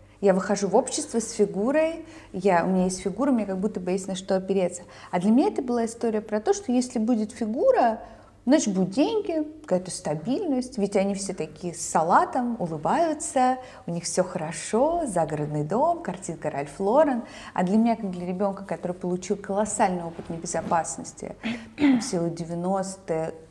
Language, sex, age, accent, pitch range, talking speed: Russian, female, 30-49, native, 180-255 Hz, 165 wpm